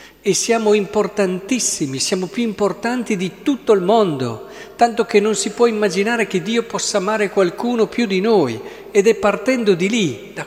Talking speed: 170 wpm